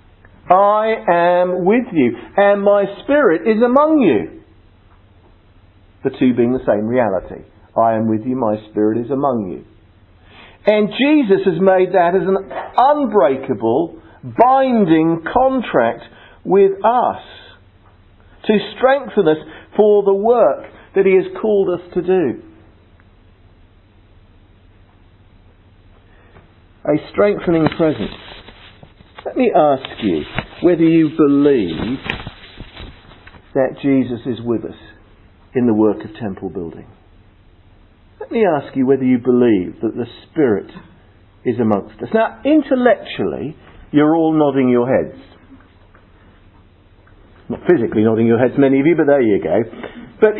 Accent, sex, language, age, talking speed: British, male, English, 50-69, 125 wpm